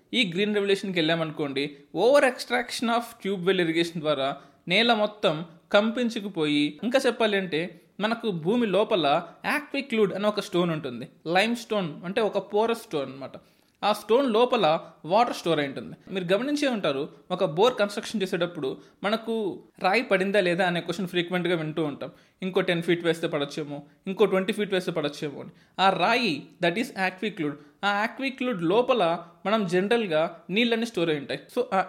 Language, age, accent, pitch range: Telugu, 20-39, native, 165-220 Hz